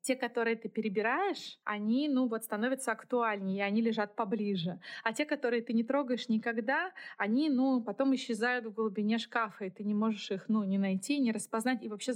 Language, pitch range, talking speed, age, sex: Russian, 210-245 Hz, 195 wpm, 20-39, female